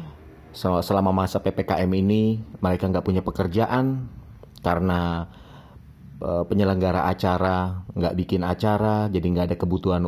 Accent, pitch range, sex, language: native, 85-110 Hz, male, Indonesian